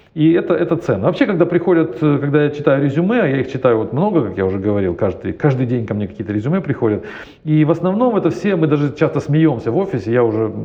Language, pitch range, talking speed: Russian, 125-180 Hz, 230 wpm